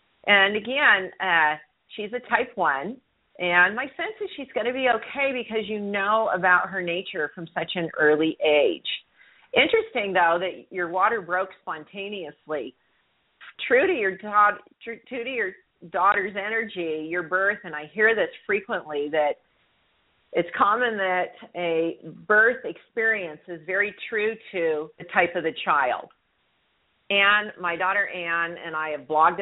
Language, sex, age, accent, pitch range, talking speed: English, female, 40-59, American, 155-205 Hz, 145 wpm